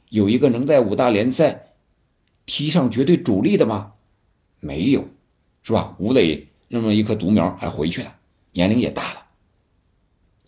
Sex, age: male, 50-69